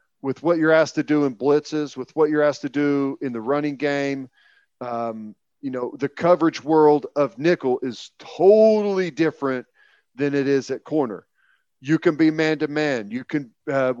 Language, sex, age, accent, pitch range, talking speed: English, male, 40-59, American, 130-155 Hz, 185 wpm